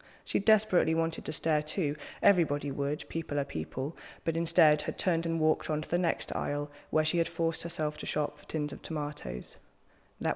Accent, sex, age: British, female, 20-39